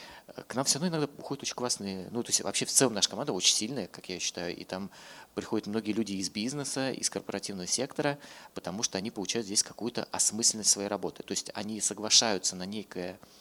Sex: male